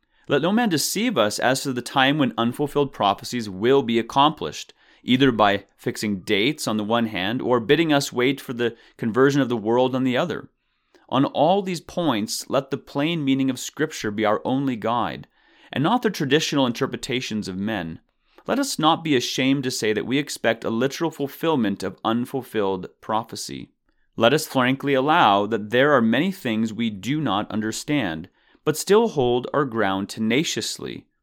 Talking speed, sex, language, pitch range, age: 175 wpm, male, English, 110-145 Hz, 30-49